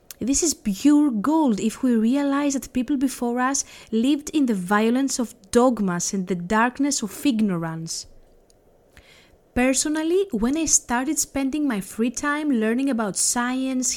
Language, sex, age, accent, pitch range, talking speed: Greek, female, 20-39, Spanish, 220-275 Hz, 140 wpm